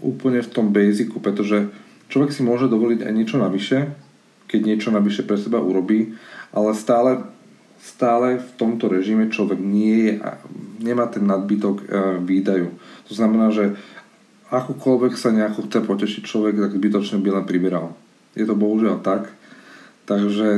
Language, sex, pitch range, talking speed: Slovak, male, 100-110 Hz, 150 wpm